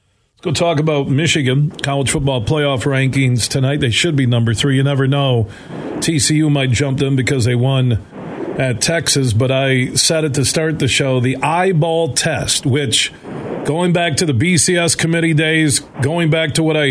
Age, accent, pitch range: 40-59, American, 130-170 Hz